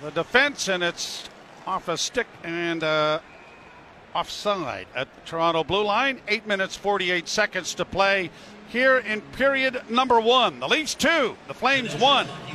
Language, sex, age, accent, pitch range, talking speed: English, male, 50-69, American, 165-225 Hz, 160 wpm